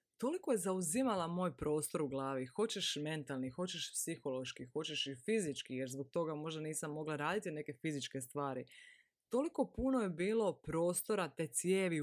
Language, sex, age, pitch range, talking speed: Croatian, female, 20-39, 150-200 Hz, 155 wpm